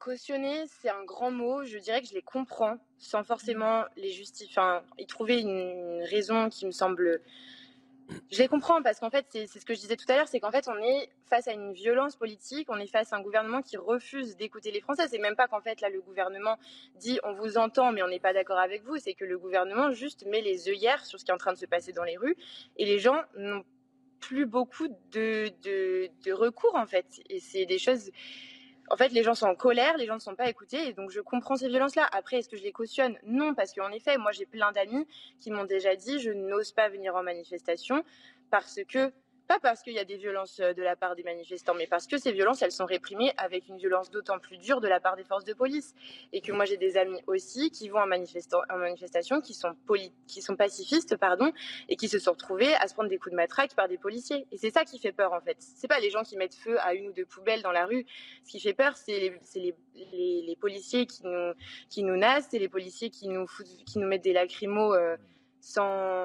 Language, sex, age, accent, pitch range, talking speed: French, female, 20-39, French, 190-260 Hz, 255 wpm